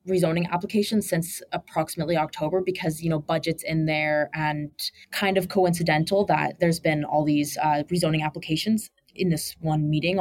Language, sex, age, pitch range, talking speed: English, female, 20-39, 155-190 Hz, 160 wpm